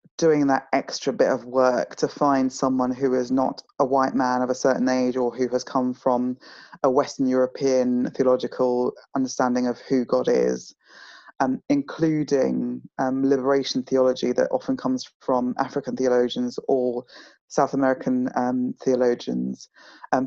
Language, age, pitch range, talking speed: English, 20-39, 125-145 Hz, 150 wpm